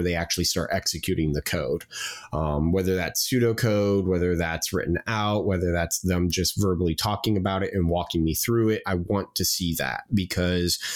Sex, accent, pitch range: male, American, 85-100 Hz